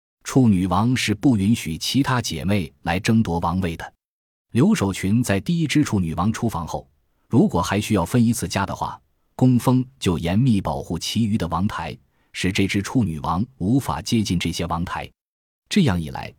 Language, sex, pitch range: Chinese, male, 85-115 Hz